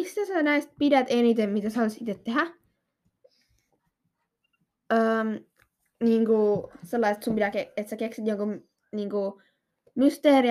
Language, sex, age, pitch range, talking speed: Finnish, female, 10-29, 205-255 Hz, 120 wpm